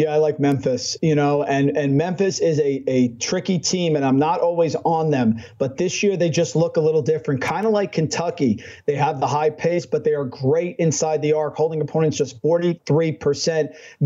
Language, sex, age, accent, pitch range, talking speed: English, male, 40-59, American, 145-170 Hz, 210 wpm